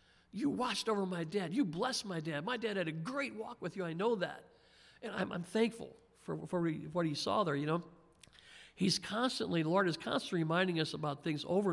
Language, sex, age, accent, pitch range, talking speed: English, male, 50-69, American, 150-185 Hz, 220 wpm